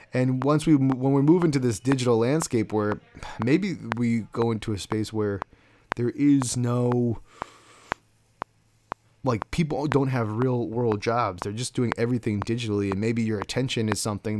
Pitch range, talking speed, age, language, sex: 105-125 Hz, 165 wpm, 30-49, English, male